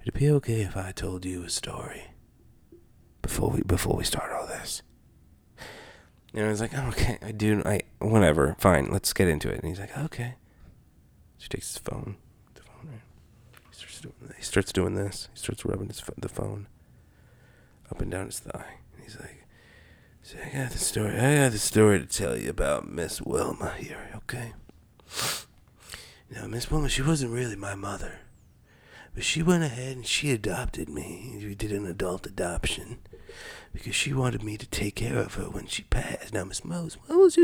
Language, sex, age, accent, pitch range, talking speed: English, male, 40-59, American, 95-130 Hz, 190 wpm